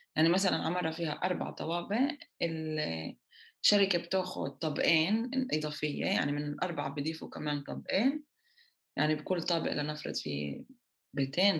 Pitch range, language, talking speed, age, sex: 150-215 Hz, Arabic, 115 wpm, 20-39, female